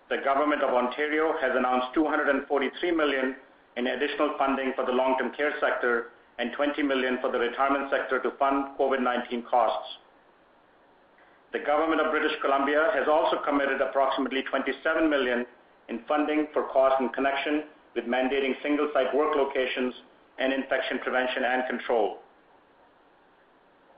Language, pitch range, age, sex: English, 130-150 Hz, 50-69, male